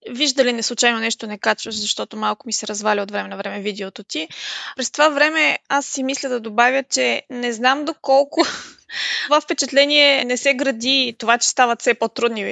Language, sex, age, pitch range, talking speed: Bulgarian, female, 20-39, 235-300 Hz, 185 wpm